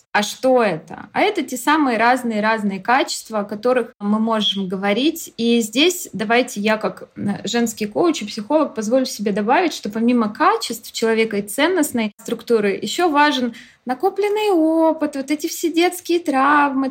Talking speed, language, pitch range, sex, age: 155 wpm, Russian, 205-270 Hz, female, 20-39